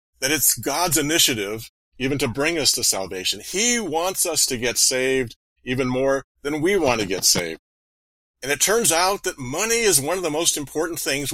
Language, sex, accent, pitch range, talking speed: English, male, American, 105-150 Hz, 195 wpm